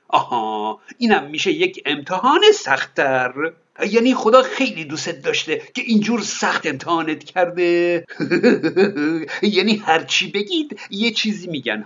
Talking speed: 110 wpm